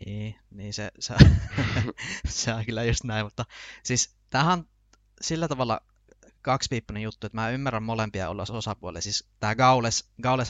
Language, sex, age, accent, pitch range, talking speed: Finnish, male, 20-39, native, 95-115 Hz, 135 wpm